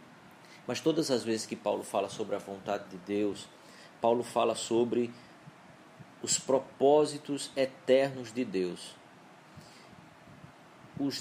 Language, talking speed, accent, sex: Portuguese, 110 wpm, Brazilian, male